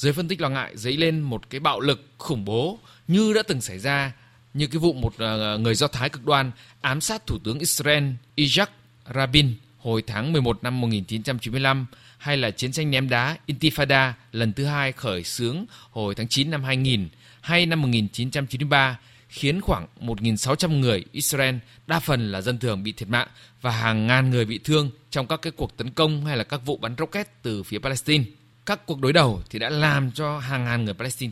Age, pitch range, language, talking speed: 20-39, 120-150 Hz, Vietnamese, 200 wpm